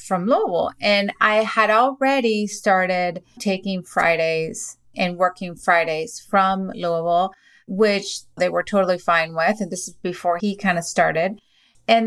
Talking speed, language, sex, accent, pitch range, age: 145 wpm, English, female, American, 175-215 Hz, 30-49